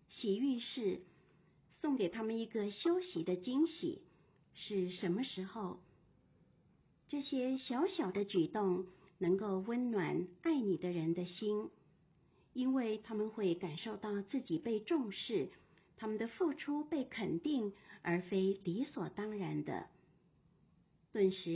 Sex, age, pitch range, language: female, 50-69, 180-260 Hz, Chinese